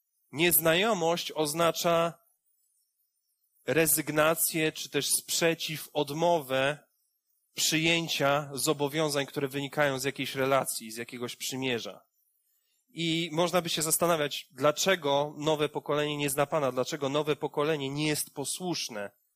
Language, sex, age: Polish, male, 30-49